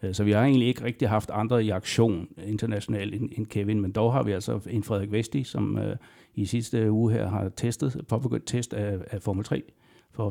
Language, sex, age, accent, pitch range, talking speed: Danish, male, 60-79, native, 105-120 Hz, 200 wpm